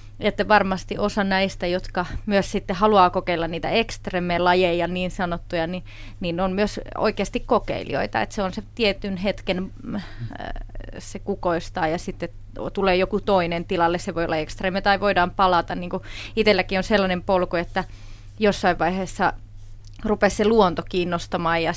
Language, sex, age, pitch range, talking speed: Finnish, female, 30-49, 170-200 Hz, 145 wpm